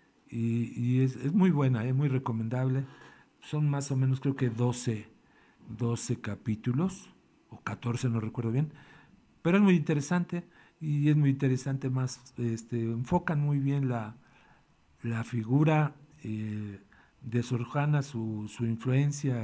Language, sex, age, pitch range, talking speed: Spanish, male, 50-69, 120-150 Hz, 135 wpm